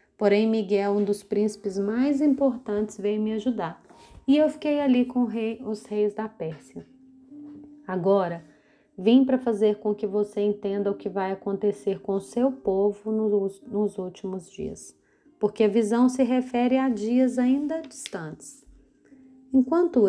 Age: 30-49